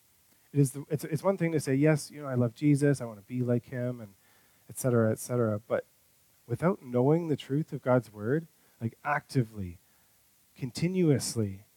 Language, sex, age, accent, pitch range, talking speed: English, male, 30-49, American, 115-150 Hz, 190 wpm